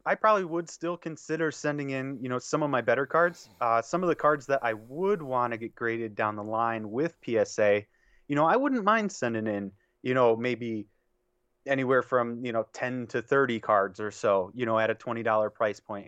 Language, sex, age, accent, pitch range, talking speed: English, male, 30-49, American, 115-150 Hz, 215 wpm